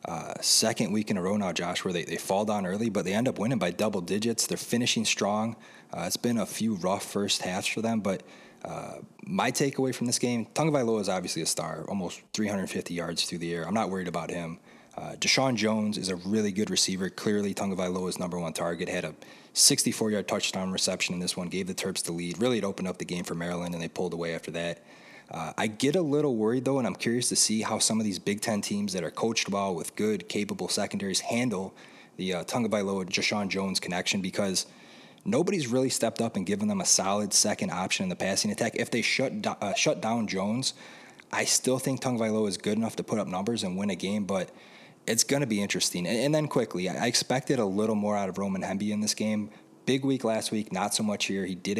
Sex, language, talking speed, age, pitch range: male, English, 235 wpm, 20-39, 95-120 Hz